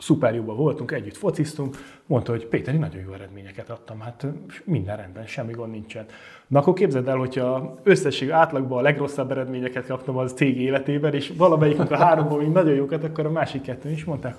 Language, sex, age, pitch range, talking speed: Hungarian, male, 30-49, 115-150 Hz, 190 wpm